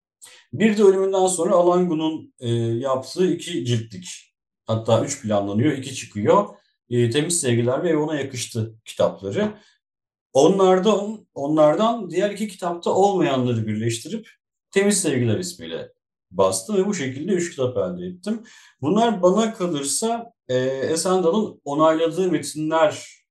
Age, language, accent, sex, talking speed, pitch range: 50-69, Turkish, native, male, 115 wpm, 115-180 Hz